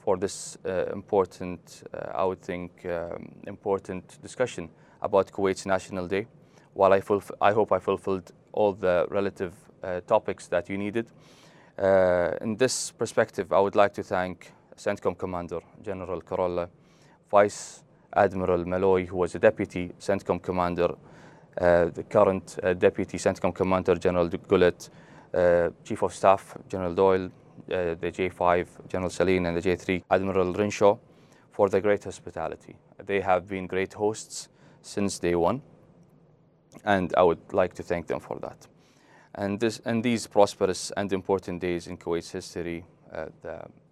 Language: English